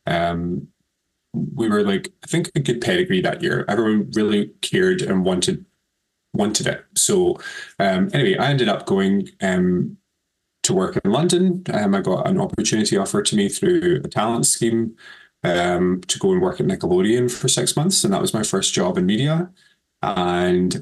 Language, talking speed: English, 175 wpm